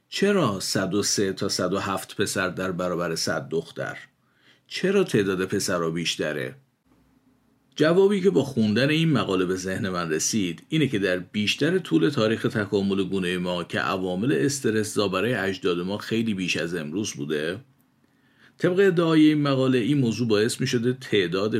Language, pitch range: Persian, 90-130 Hz